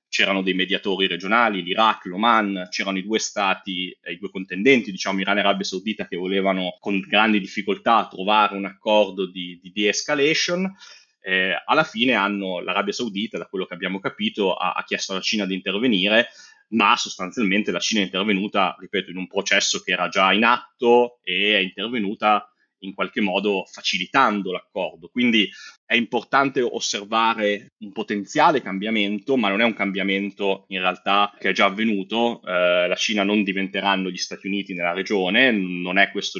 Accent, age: native, 20-39